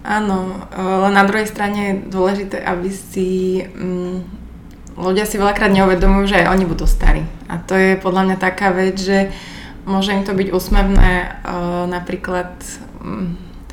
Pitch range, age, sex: 180-195 Hz, 20-39, female